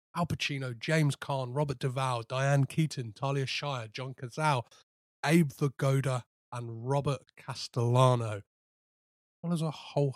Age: 30-49